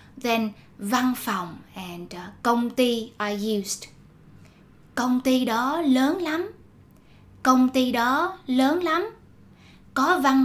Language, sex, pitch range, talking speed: Vietnamese, female, 210-265 Hz, 120 wpm